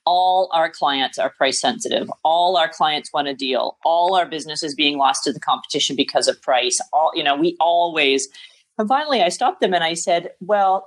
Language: English